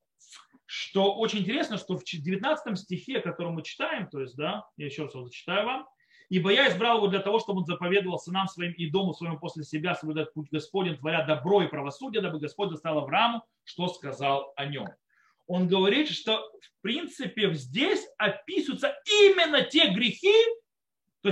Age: 30-49